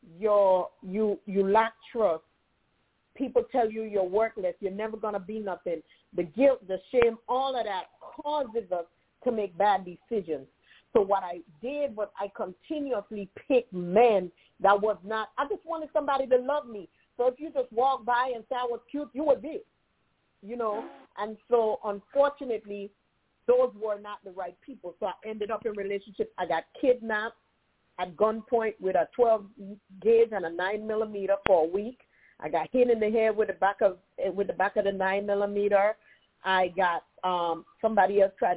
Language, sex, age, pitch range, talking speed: English, female, 40-59, 195-245 Hz, 175 wpm